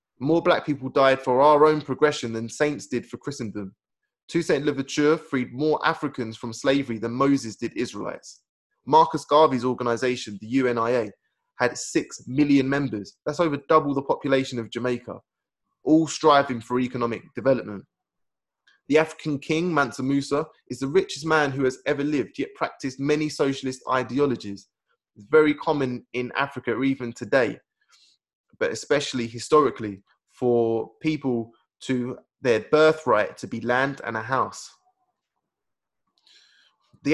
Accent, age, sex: British, 20-39, male